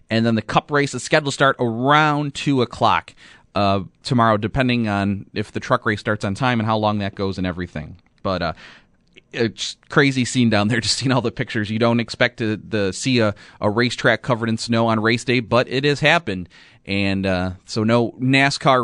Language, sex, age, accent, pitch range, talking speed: English, male, 30-49, American, 115-145 Hz, 210 wpm